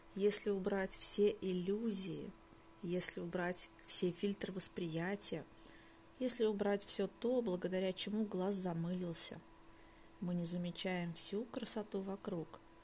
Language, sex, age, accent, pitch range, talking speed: Russian, female, 20-39, native, 175-210 Hz, 110 wpm